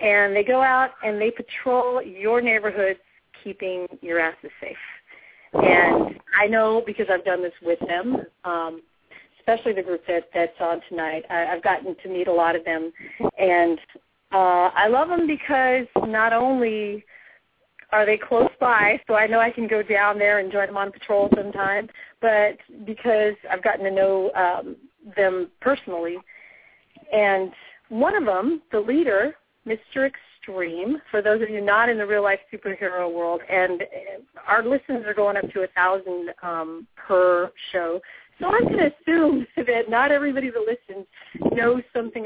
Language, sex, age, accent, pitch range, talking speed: English, female, 40-59, American, 185-235 Hz, 165 wpm